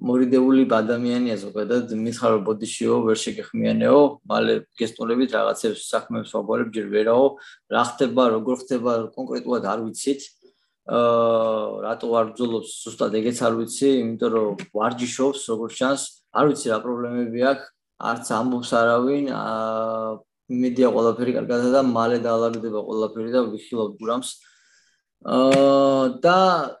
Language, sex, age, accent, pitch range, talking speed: English, male, 20-39, Indian, 115-140 Hz, 60 wpm